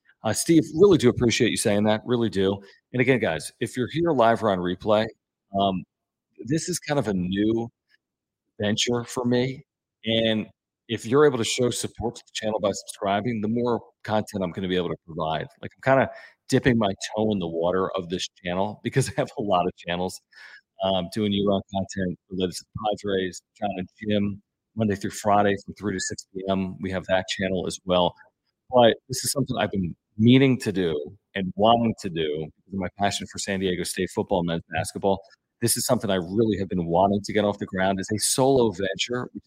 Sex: male